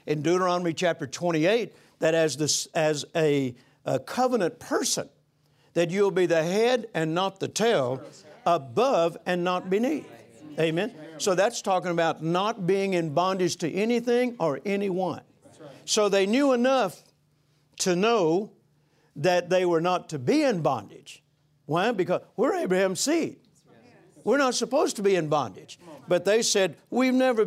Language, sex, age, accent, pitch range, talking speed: English, male, 60-79, American, 165-225 Hz, 150 wpm